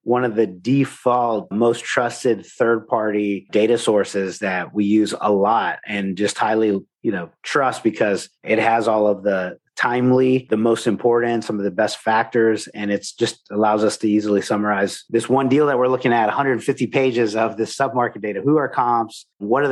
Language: English